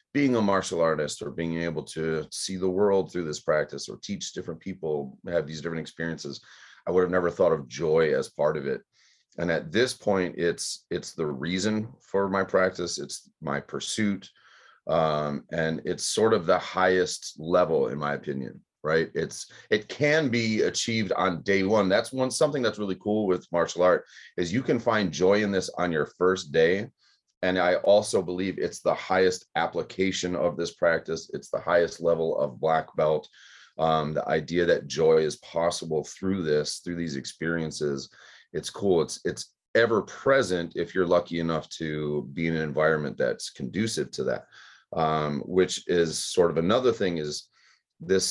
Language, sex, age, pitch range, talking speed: English, male, 30-49, 80-95 Hz, 180 wpm